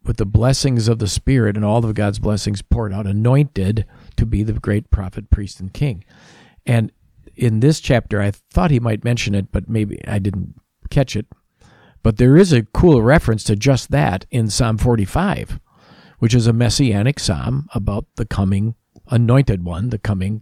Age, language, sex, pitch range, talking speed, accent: 50-69, English, male, 100-125 Hz, 180 wpm, American